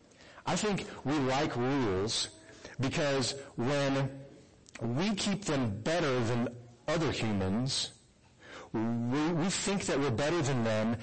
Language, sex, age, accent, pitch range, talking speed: English, male, 50-69, American, 115-145 Hz, 120 wpm